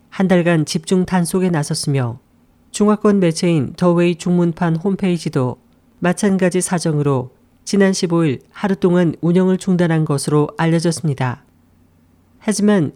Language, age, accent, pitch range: Korean, 40-59, native, 150-190 Hz